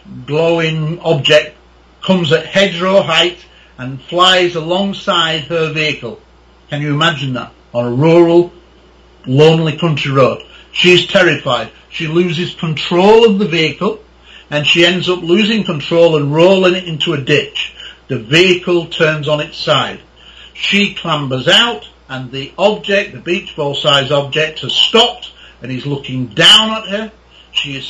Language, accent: English, British